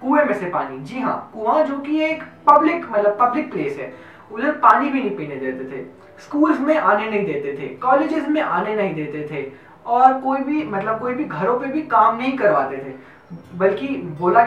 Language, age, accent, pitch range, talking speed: Hindi, 20-39, native, 195-290 Hz, 125 wpm